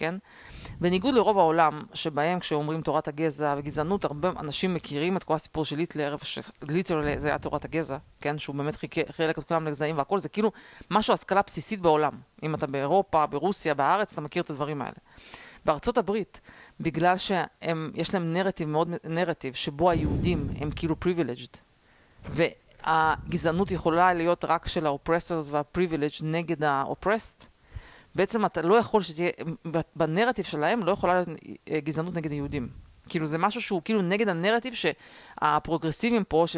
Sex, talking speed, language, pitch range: female, 150 wpm, Hebrew, 155-190 Hz